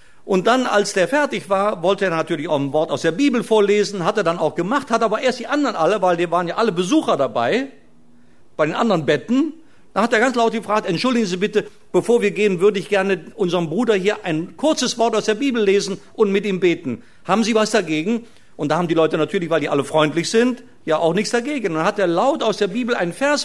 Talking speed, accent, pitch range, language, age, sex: 245 wpm, German, 170-240 Hz, German, 50-69, male